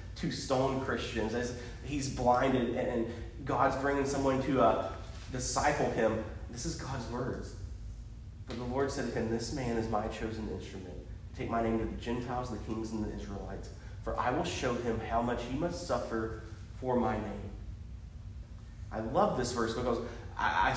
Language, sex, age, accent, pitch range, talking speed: English, male, 30-49, American, 105-130 Hz, 175 wpm